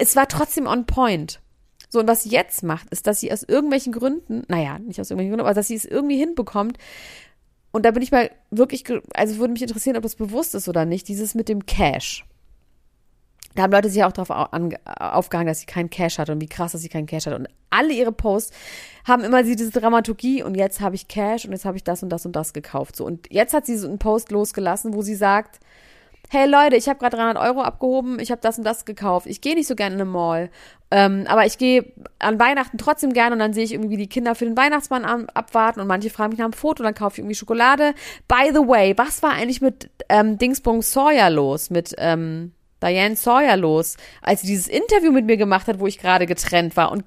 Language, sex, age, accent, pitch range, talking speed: German, female, 30-49, German, 185-250 Hz, 240 wpm